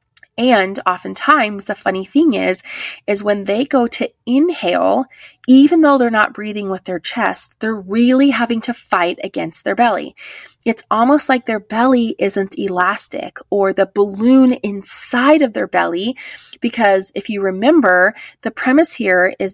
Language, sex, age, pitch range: English, female, 20-39, 185-235 Hz